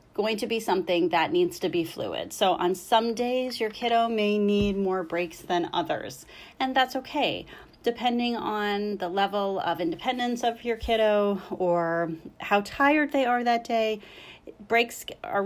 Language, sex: English, female